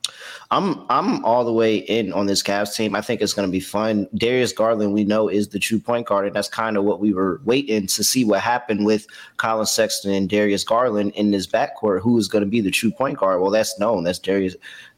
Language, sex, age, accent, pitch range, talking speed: English, male, 30-49, American, 100-120 Hz, 245 wpm